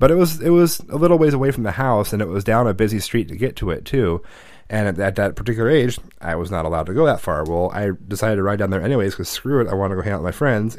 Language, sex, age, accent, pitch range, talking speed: English, male, 30-49, American, 95-120 Hz, 325 wpm